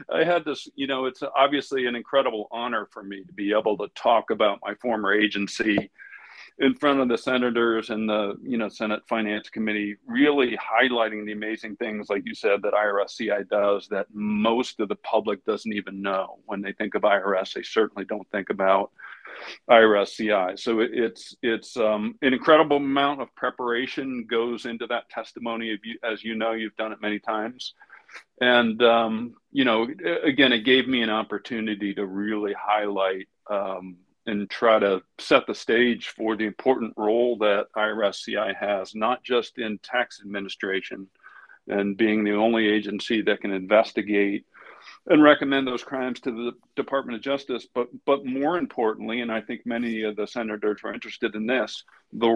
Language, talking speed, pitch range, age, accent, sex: English, 175 wpm, 105-120 Hz, 50-69, American, male